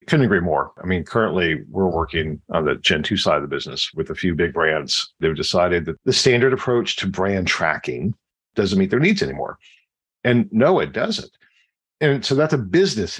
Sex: male